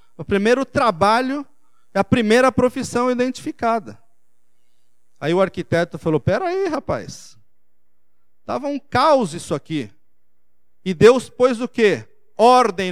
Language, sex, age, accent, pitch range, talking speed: Portuguese, male, 40-59, Brazilian, 150-235 Hz, 120 wpm